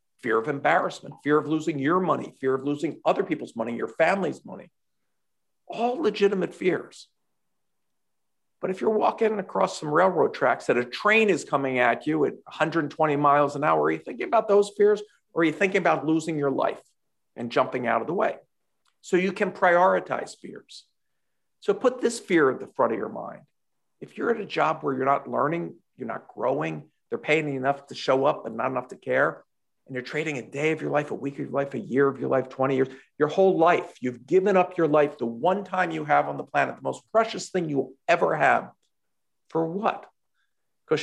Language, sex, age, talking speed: English, male, 50-69, 210 wpm